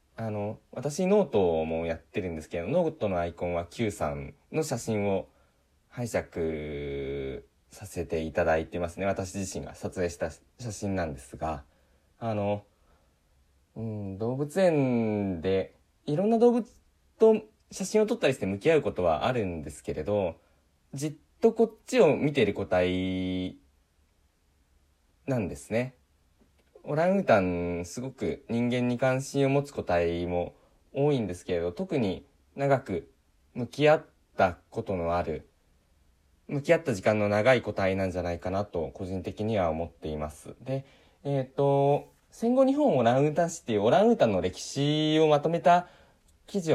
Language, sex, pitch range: Japanese, male, 85-135 Hz